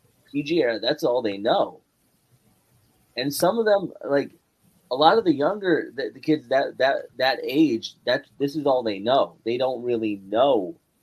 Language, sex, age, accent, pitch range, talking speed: English, male, 30-49, American, 105-140 Hz, 180 wpm